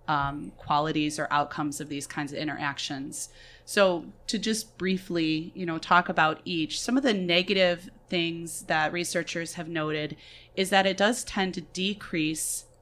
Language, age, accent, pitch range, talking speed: English, 30-49, American, 155-195 Hz, 160 wpm